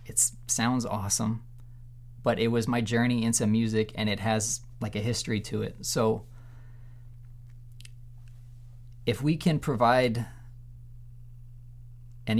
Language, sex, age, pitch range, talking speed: English, male, 20-39, 110-120 Hz, 115 wpm